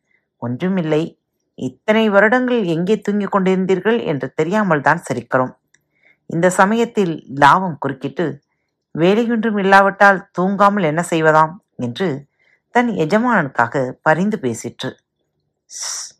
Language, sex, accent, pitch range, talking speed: Tamil, female, native, 135-200 Hz, 95 wpm